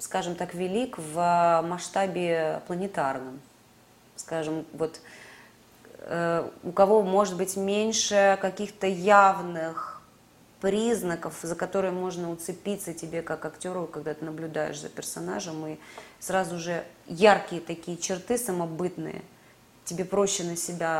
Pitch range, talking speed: 155-185 Hz, 115 wpm